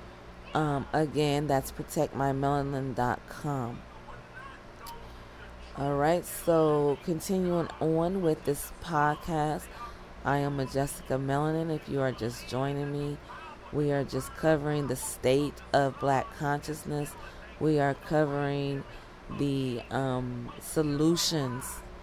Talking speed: 100 wpm